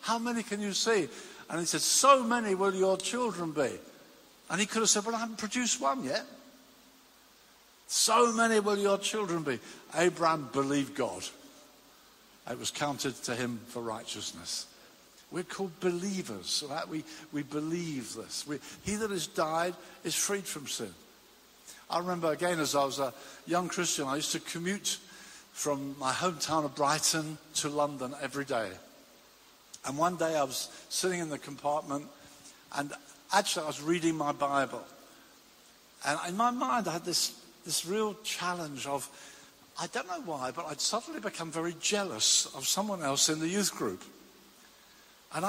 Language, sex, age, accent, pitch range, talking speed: English, male, 60-79, British, 145-200 Hz, 165 wpm